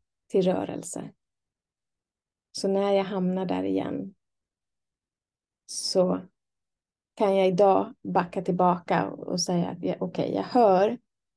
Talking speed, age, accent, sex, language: 105 wpm, 30-49, native, female, Swedish